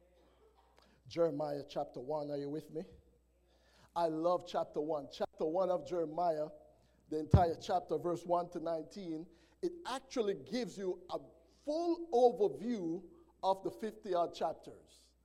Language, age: English, 50-69